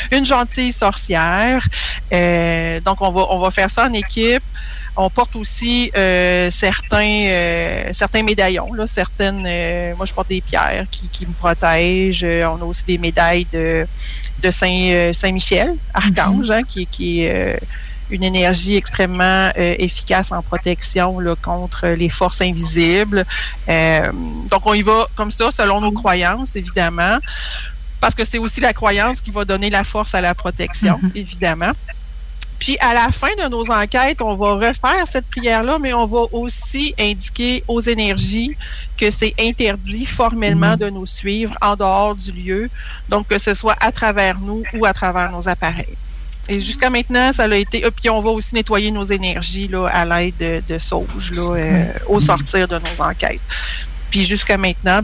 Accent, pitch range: Canadian, 175-220 Hz